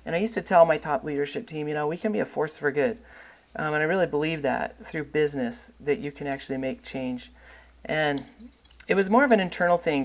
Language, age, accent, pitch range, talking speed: English, 40-59, American, 135-175 Hz, 240 wpm